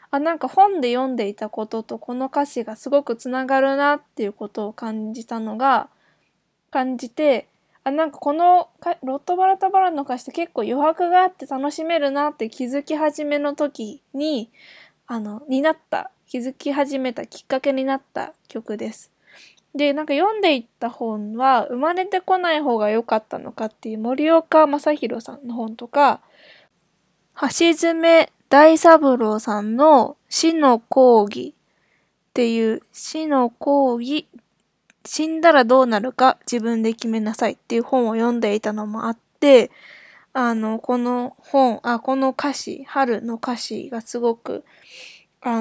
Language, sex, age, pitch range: Japanese, female, 20-39, 230-295 Hz